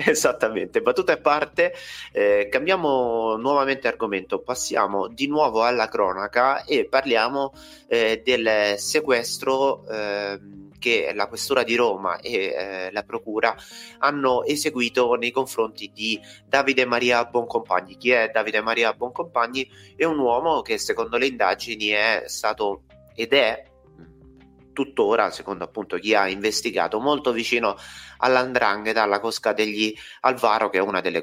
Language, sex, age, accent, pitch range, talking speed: Italian, male, 30-49, native, 100-130 Hz, 135 wpm